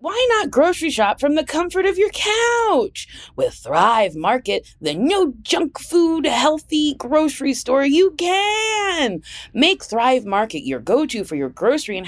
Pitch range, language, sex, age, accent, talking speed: 220-330 Hz, English, female, 20-39, American, 140 wpm